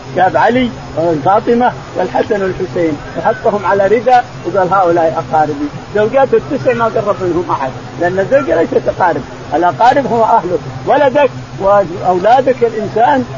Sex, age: male, 50-69